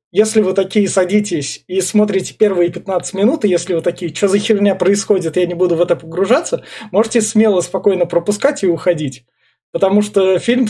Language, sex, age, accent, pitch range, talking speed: Russian, male, 20-39, native, 165-200 Hz, 180 wpm